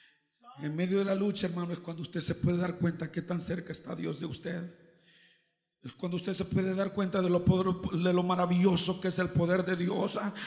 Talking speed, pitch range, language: 225 wpm, 190-260 Hz, Spanish